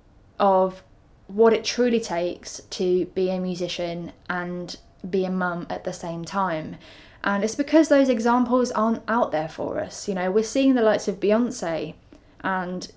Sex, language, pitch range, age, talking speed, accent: female, English, 175-220 Hz, 10-29, 165 wpm, British